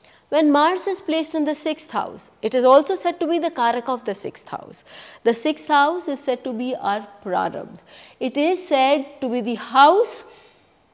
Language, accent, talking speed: English, Indian, 195 wpm